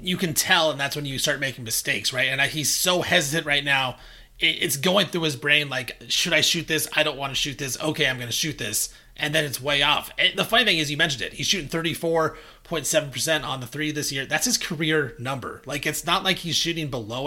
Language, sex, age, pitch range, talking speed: English, male, 30-49, 135-160 Hz, 245 wpm